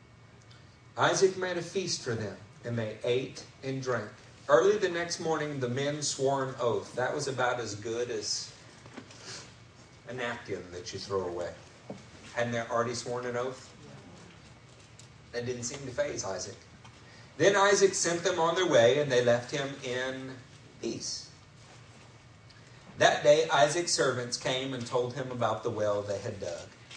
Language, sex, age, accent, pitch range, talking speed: English, male, 50-69, American, 115-145 Hz, 160 wpm